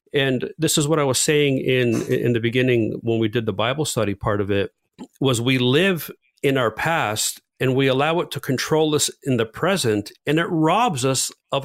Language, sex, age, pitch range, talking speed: English, male, 50-69, 120-155 Hz, 210 wpm